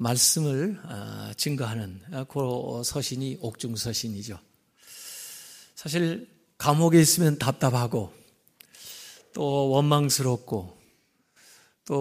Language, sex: Korean, male